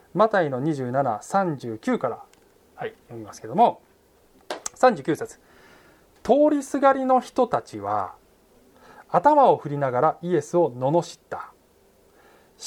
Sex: male